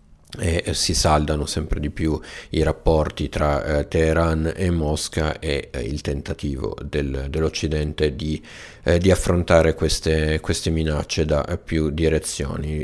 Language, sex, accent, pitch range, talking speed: Italian, male, native, 75-85 Hz, 135 wpm